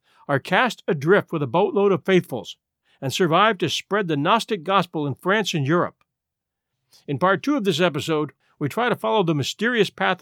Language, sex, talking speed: English, male, 190 wpm